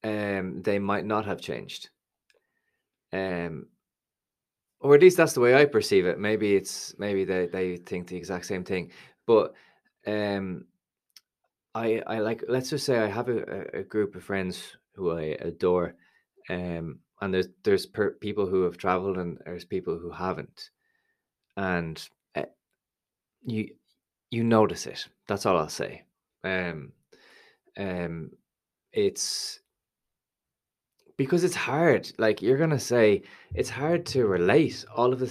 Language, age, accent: English, 20-39, Irish